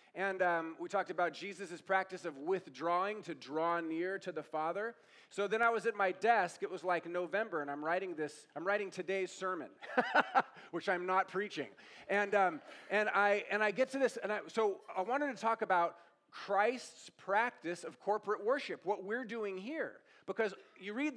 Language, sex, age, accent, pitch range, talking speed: English, male, 40-59, American, 180-230 Hz, 190 wpm